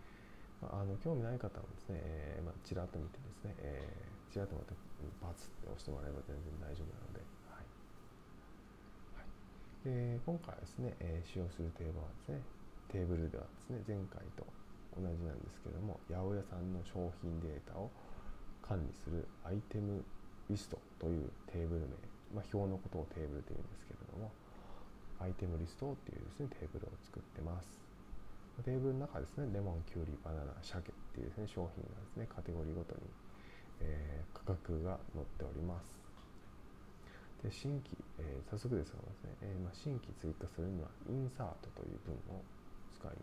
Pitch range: 85-100 Hz